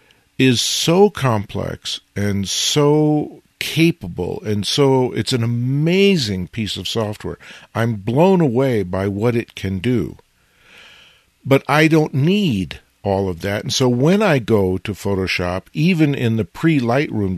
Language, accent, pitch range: English, American, 105-135 Hz